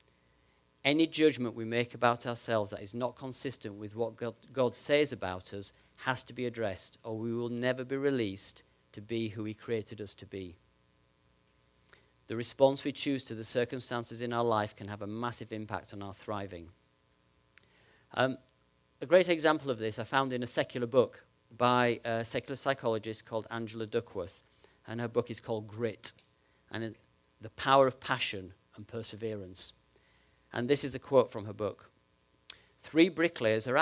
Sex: male